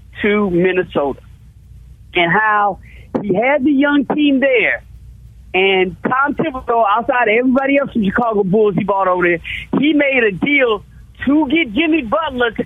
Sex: male